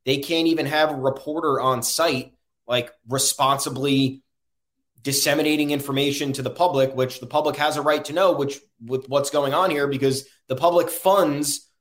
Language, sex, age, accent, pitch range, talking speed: English, male, 20-39, American, 130-155 Hz, 170 wpm